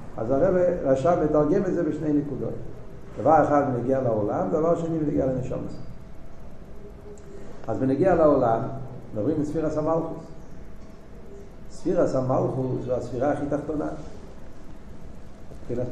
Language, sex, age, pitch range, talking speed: Hebrew, male, 60-79, 115-150 Hz, 115 wpm